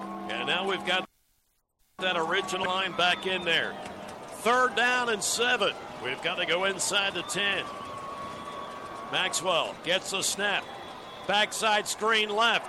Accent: American